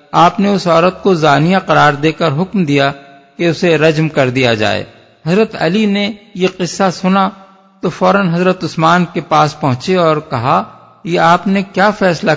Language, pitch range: Urdu, 145-185 Hz